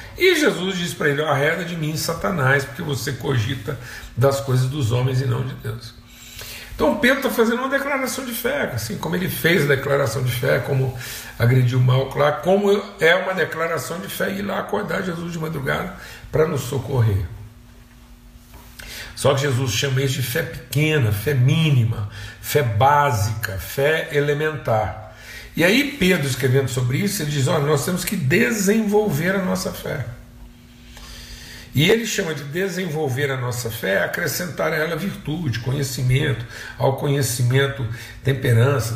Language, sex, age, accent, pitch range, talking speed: Portuguese, male, 60-79, Brazilian, 120-155 Hz, 155 wpm